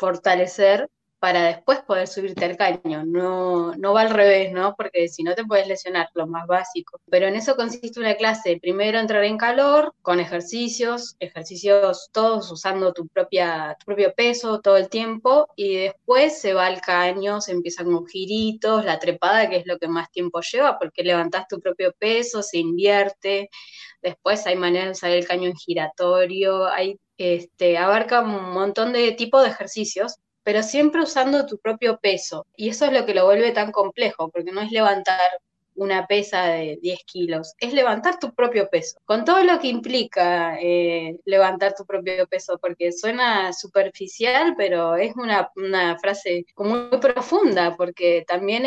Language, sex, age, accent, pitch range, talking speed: Spanish, female, 20-39, Argentinian, 180-225 Hz, 170 wpm